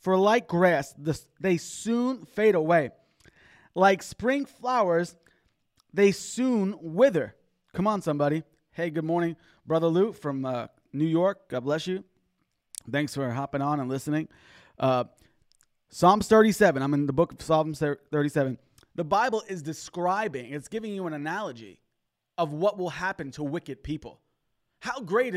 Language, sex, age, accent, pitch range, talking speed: English, male, 20-39, American, 150-215 Hz, 145 wpm